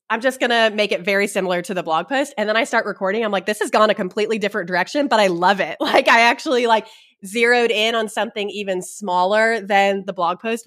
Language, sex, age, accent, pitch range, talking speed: English, female, 20-39, American, 175-225 Hz, 240 wpm